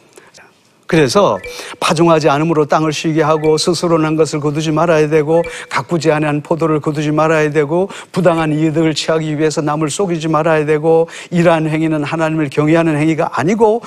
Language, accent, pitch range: Korean, native, 155-205 Hz